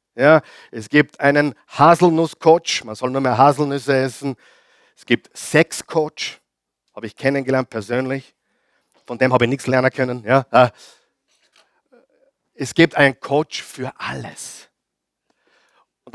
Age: 50-69